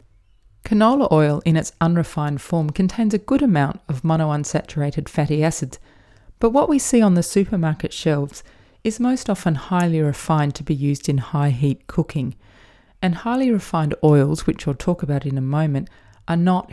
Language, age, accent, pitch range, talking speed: English, 40-59, Australian, 135-175 Hz, 170 wpm